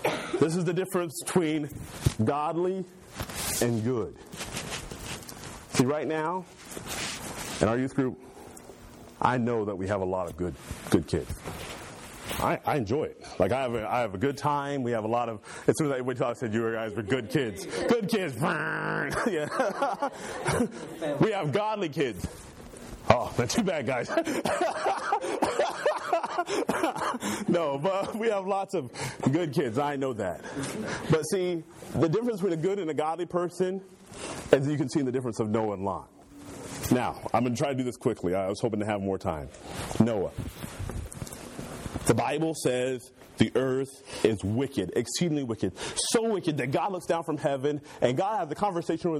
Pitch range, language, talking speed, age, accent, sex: 115-170 Hz, English, 170 wpm, 40-59, American, male